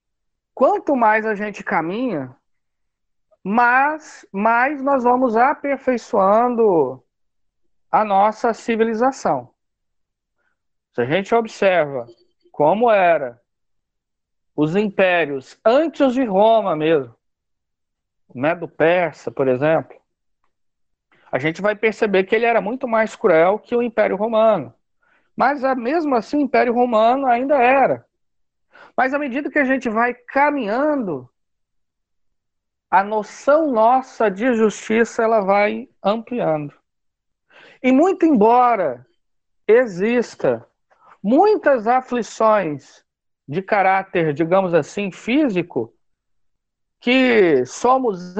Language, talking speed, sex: Portuguese, 100 wpm, male